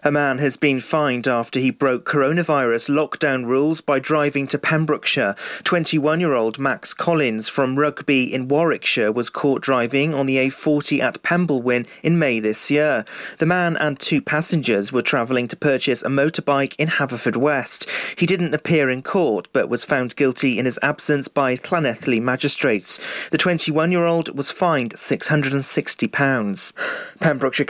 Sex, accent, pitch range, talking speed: male, British, 130-155 Hz, 150 wpm